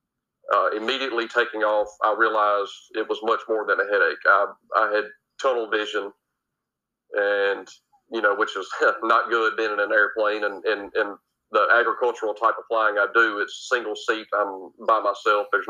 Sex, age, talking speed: male, 40-59, 175 wpm